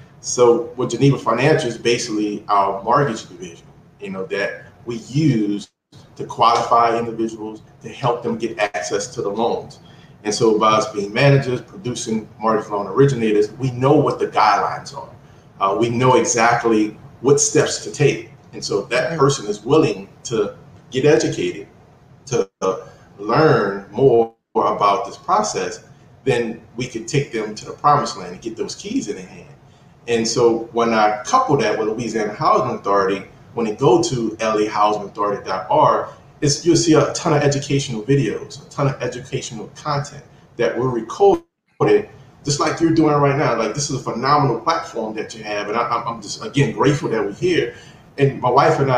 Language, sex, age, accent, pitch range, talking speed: English, male, 40-59, American, 115-145 Hz, 170 wpm